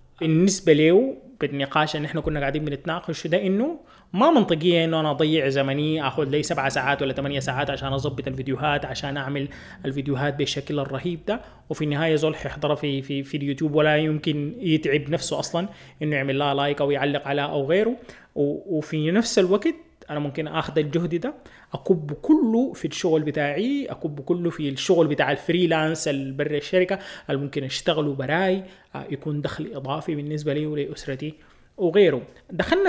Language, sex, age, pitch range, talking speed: Arabic, male, 20-39, 140-175 Hz, 155 wpm